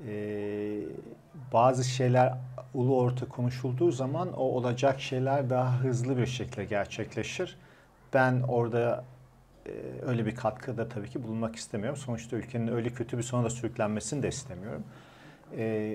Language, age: Turkish, 50-69